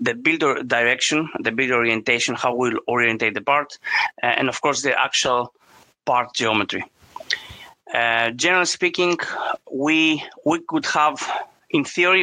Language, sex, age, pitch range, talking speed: English, male, 30-49, 125-155 Hz, 130 wpm